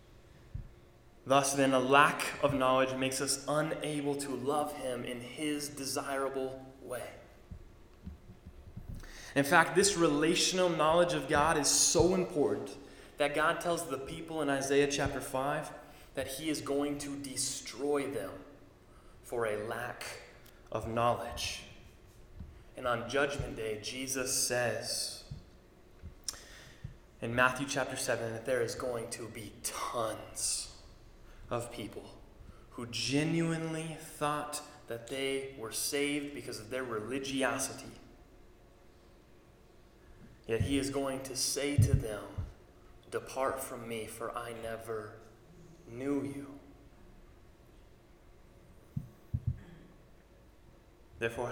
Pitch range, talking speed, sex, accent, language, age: 115-145 Hz, 110 wpm, male, American, English, 20-39